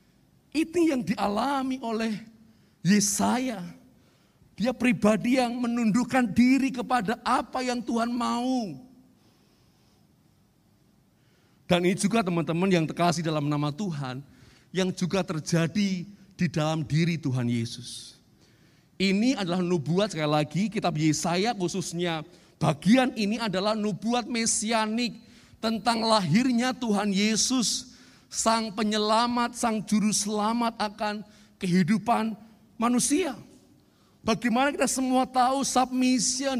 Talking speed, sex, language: 100 wpm, male, Indonesian